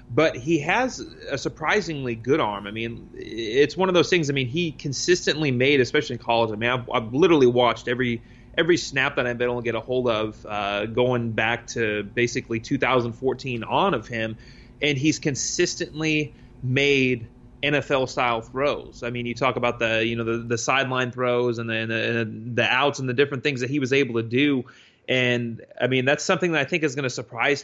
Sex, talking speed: male, 210 wpm